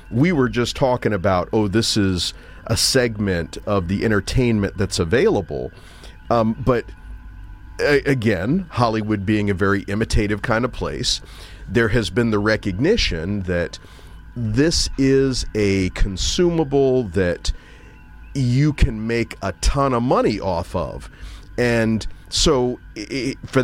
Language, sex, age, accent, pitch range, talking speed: English, male, 40-59, American, 95-130 Hz, 125 wpm